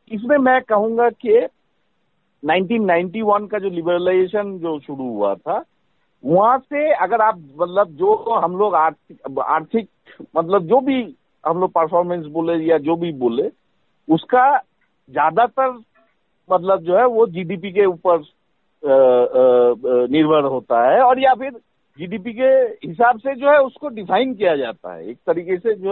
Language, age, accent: Hindi, 50-69, native